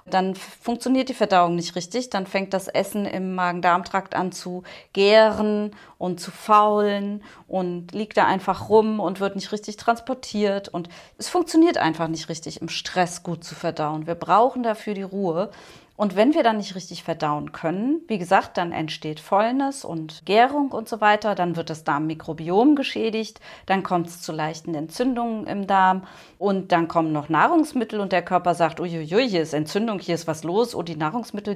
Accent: German